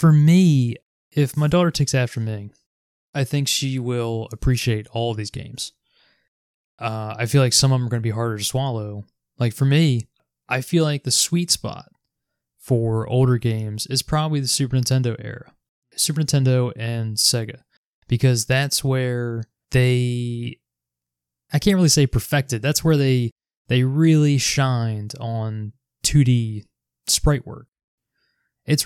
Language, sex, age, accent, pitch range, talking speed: English, male, 20-39, American, 115-135 Hz, 150 wpm